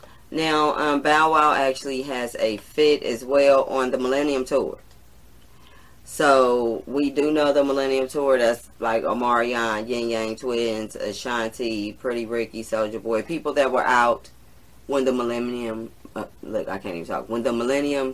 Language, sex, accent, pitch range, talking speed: English, female, American, 115-135 Hz, 160 wpm